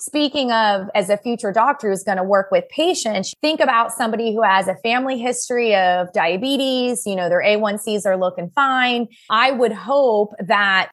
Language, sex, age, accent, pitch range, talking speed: English, female, 20-39, American, 195-260 Hz, 180 wpm